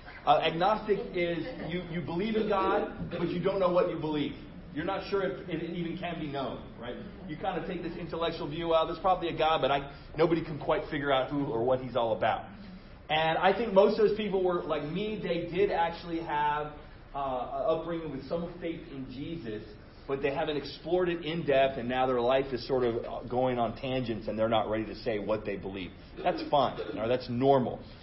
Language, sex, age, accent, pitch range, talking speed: English, male, 30-49, American, 150-200 Hz, 225 wpm